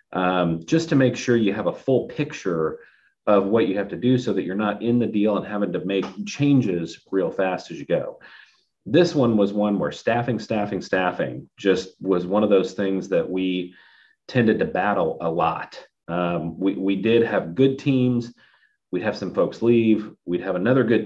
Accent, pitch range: American, 95-115 Hz